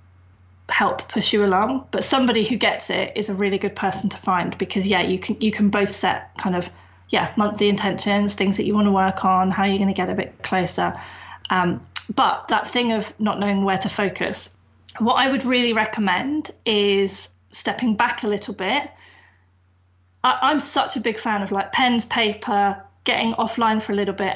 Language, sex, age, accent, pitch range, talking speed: English, female, 30-49, British, 190-230 Hz, 195 wpm